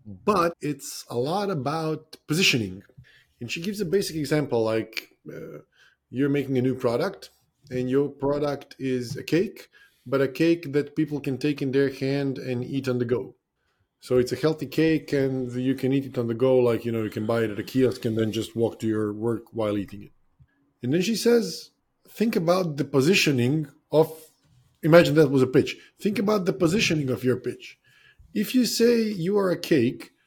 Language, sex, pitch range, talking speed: English, male, 125-175 Hz, 200 wpm